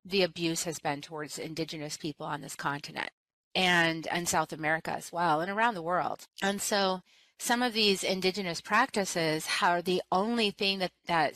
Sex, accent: female, American